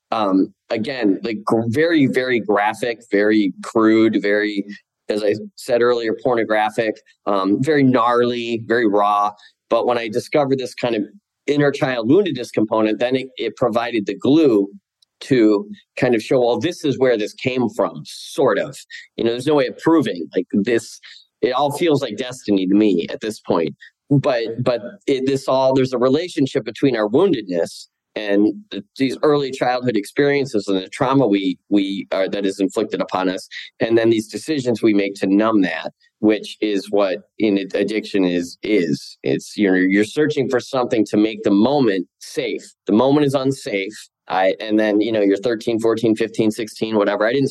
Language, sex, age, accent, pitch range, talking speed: English, male, 30-49, American, 105-130 Hz, 180 wpm